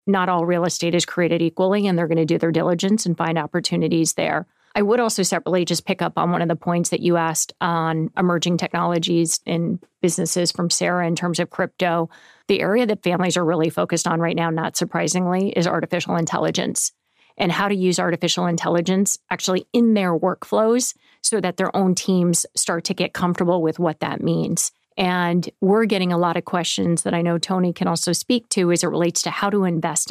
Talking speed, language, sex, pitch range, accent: 205 wpm, English, female, 170-185 Hz, American